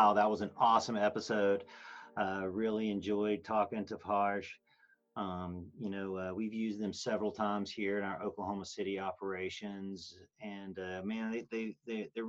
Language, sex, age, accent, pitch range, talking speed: English, male, 40-59, American, 95-110 Hz, 165 wpm